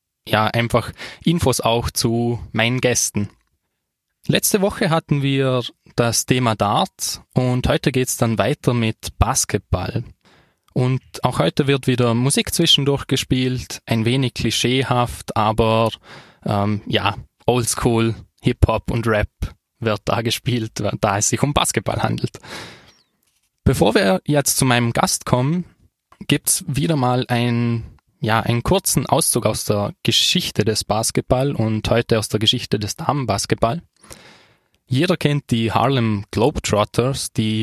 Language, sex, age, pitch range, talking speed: German, male, 20-39, 110-130 Hz, 130 wpm